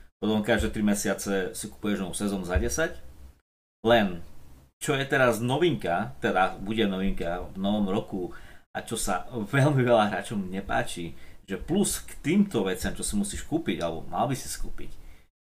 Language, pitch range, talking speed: Slovak, 80-115 Hz, 165 wpm